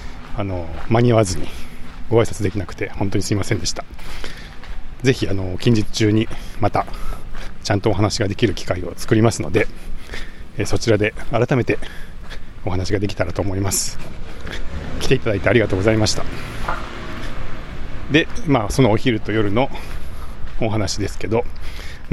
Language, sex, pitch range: Japanese, male, 90-115 Hz